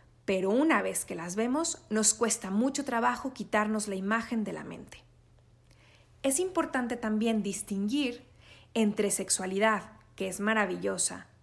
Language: Spanish